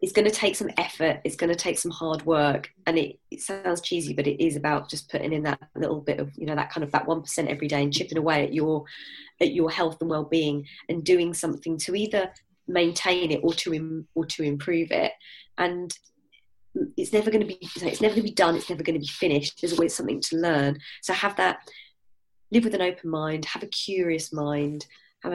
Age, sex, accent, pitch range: 20-39, female, British, 150-170 Hz